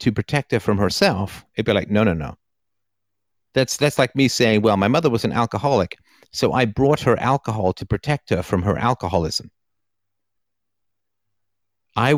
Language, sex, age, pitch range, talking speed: English, male, 50-69, 100-115 Hz, 170 wpm